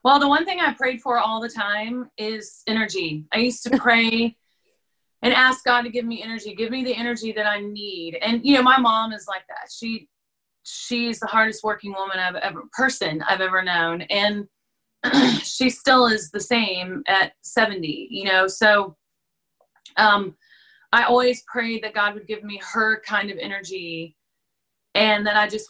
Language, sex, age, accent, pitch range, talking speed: English, female, 30-49, American, 200-240 Hz, 180 wpm